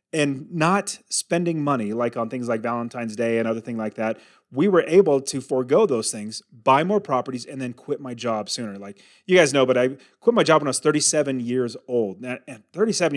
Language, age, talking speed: English, 30-49, 225 wpm